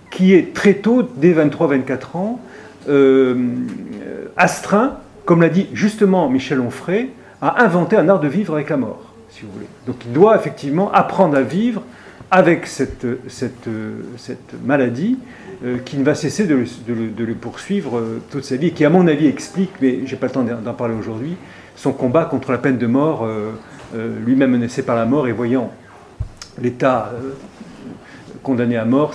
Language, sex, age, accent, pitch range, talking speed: French, male, 40-59, French, 125-185 Hz, 175 wpm